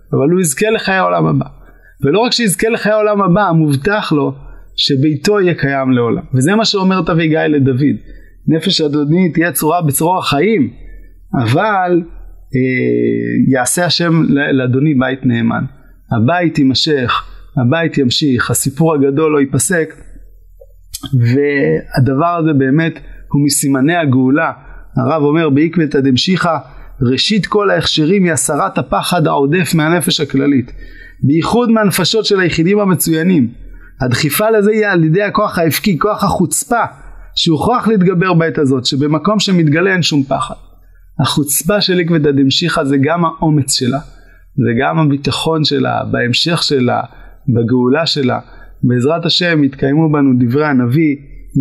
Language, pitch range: Hebrew, 135-170 Hz